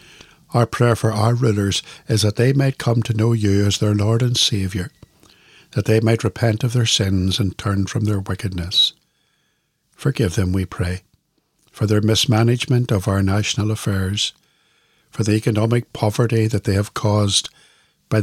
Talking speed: 165 wpm